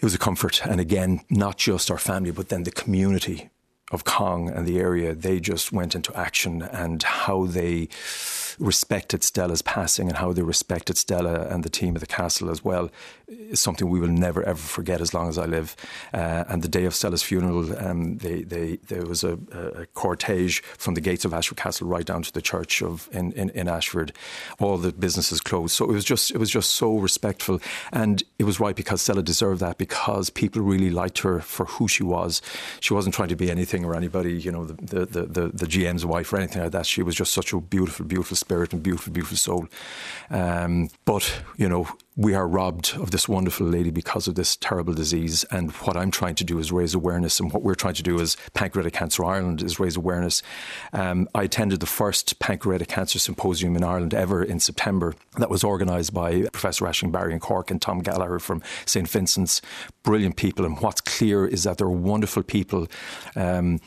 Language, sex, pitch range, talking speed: English, male, 85-95 Hz, 215 wpm